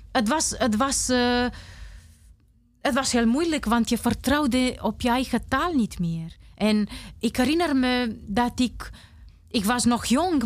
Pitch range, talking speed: 230-310 Hz, 140 wpm